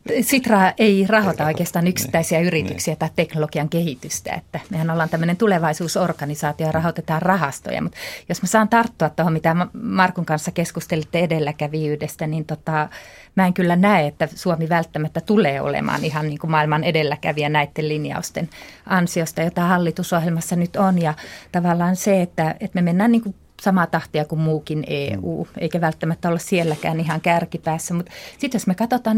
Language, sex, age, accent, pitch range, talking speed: Finnish, female, 30-49, native, 155-185 Hz, 155 wpm